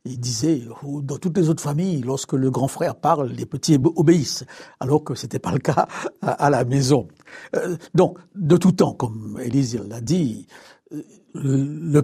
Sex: male